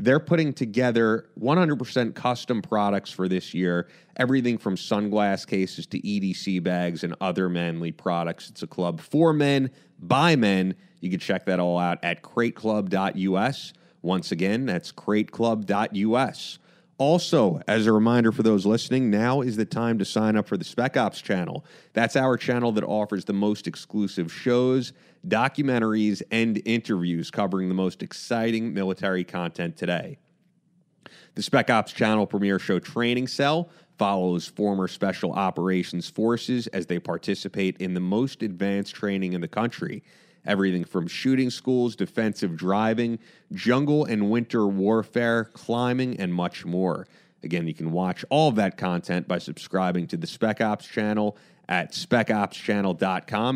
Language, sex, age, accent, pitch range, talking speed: English, male, 30-49, American, 95-125 Hz, 145 wpm